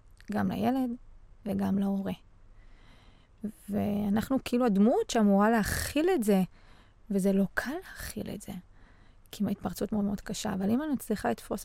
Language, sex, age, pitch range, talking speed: Hebrew, female, 20-39, 195-235 Hz, 140 wpm